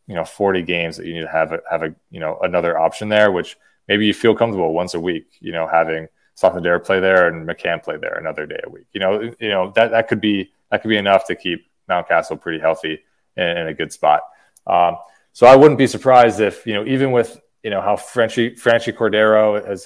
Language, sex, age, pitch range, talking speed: English, male, 20-39, 85-110 Hz, 240 wpm